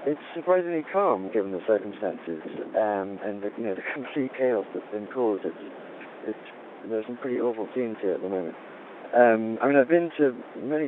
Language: English